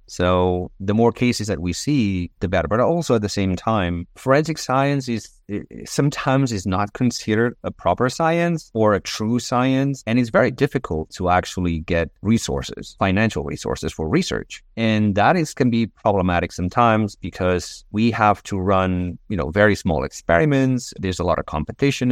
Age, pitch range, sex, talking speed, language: 30-49, 90-115 Hz, male, 170 wpm, English